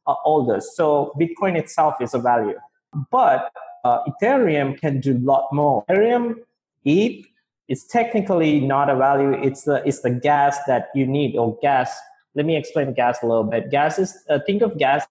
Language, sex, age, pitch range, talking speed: English, male, 20-39, 130-160 Hz, 185 wpm